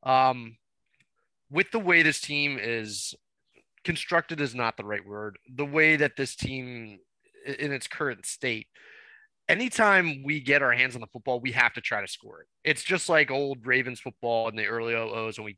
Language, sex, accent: English, male, American